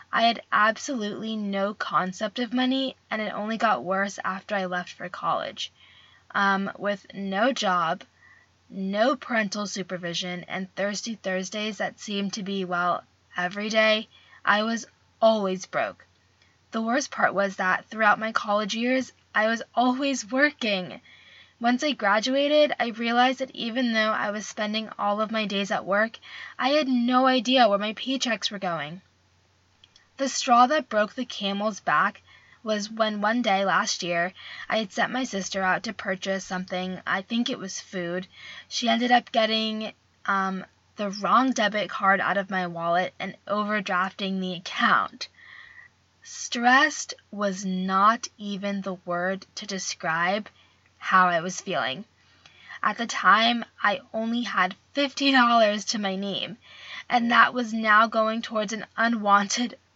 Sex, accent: female, American